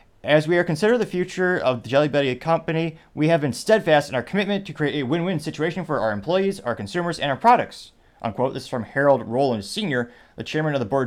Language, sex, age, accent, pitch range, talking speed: English, male, 30-49, American, 120-155 Hz, 235 wpm